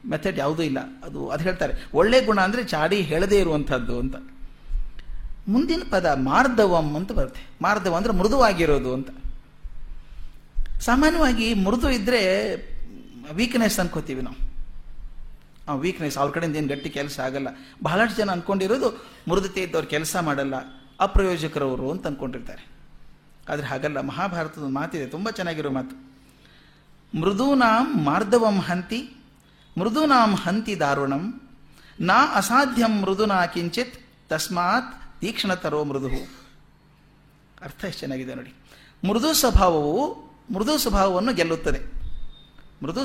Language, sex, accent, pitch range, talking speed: Kannada, male, native, 145-225 Hz, 105 wpm